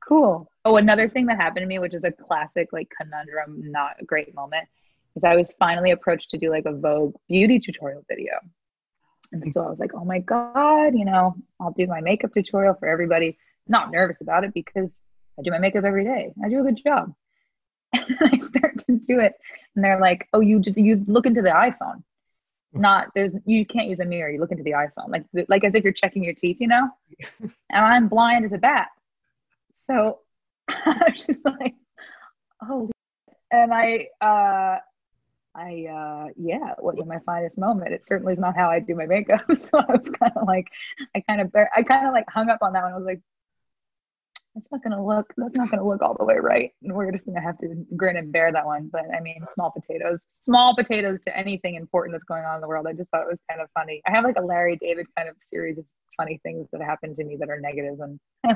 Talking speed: 230 wpm